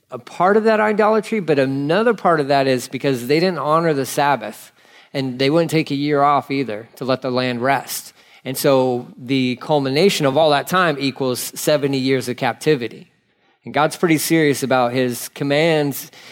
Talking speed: 185 wpm